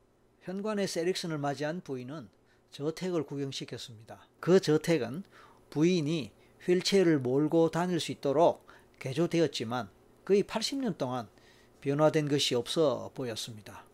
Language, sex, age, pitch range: Korean, male, 40-59, 130-180 Hz